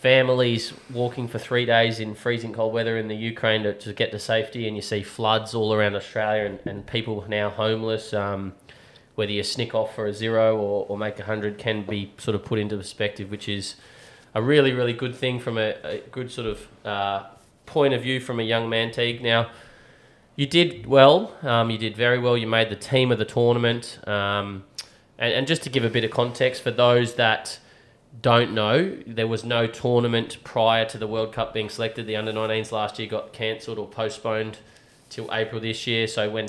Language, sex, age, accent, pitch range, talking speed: English, male, 20-39, Australian, 105-120 Hz, 210 wpm